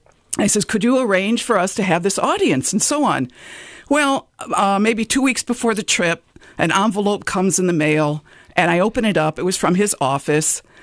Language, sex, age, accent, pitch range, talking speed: English, female, 50-69, American, 165-240 Hz, 210 wpm